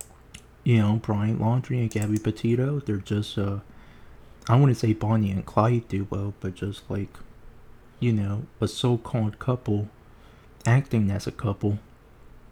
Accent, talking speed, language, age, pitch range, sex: American, 155 wpm, English, 30-49, 100-115 Hz, male